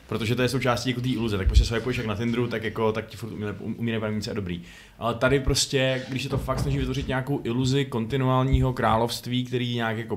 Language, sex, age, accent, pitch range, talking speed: Czech, male, 20-39, native, 115-130 Hz, 225 wpm